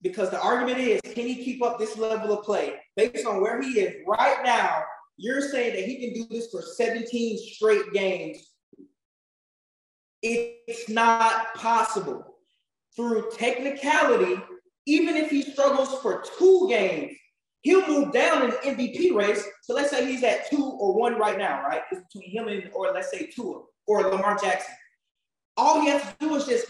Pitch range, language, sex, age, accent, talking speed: 225-285 Hz, English, male, 20-39, American, 175 wpm